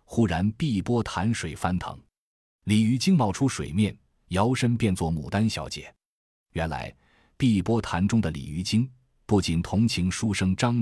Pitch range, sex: 80-110 Hz, male